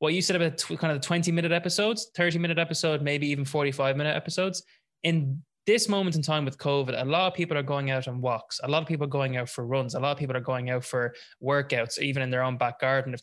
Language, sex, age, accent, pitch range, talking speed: English, male, 20-39, Irish, 130-165 Hz, 270 wpm